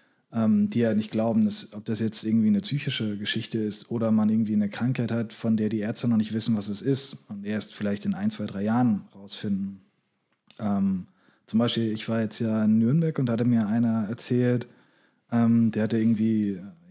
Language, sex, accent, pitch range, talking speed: German, male, German, 110-140 Hz, 200 wpm